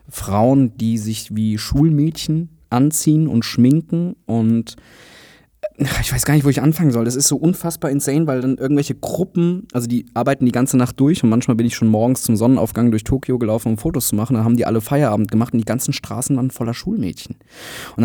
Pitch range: 110-135 Hz